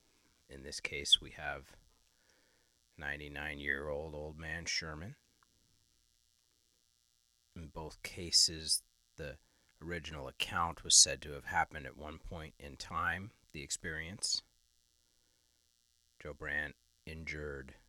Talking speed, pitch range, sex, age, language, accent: 100 wpm, 70-80 Hz, male, 40-59, English, American